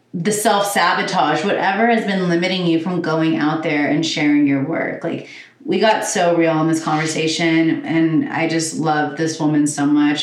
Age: 30-49